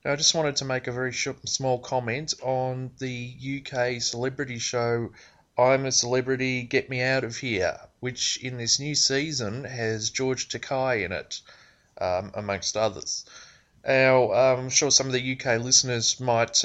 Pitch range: 110-140 Hz